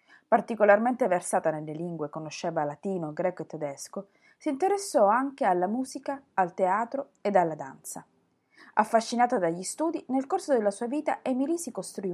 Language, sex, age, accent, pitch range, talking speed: Italian, female, 30-49, native, 175-250 Hz, 150 wpm